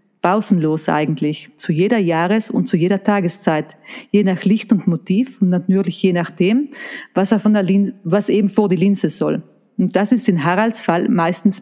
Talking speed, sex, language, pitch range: 175 wpm, female, German, 175-225 Hz